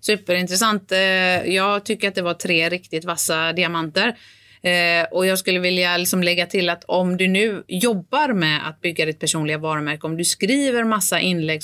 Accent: native